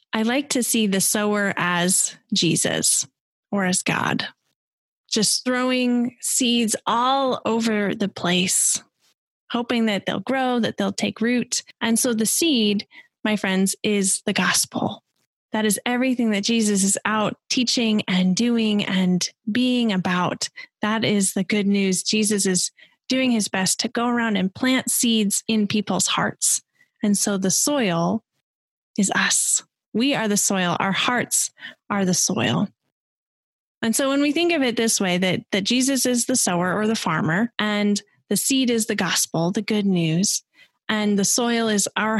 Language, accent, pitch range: English, American, 190-240 Hz